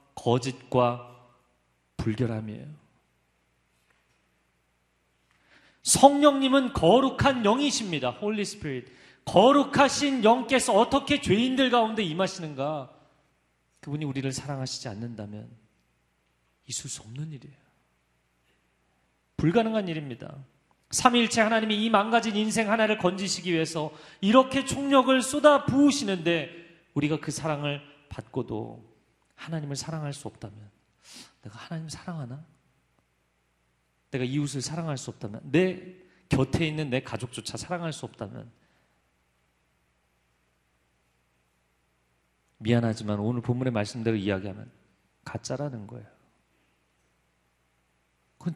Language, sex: Korean, male